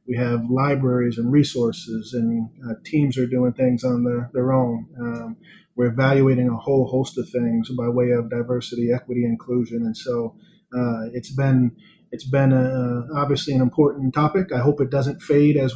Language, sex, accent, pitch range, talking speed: English, male, American, 125-140 Hz, 180 wpm